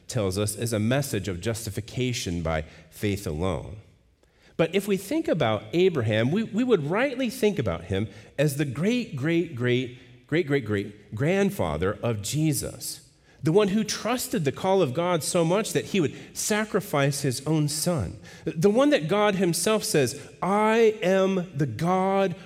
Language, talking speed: English, 165 wpm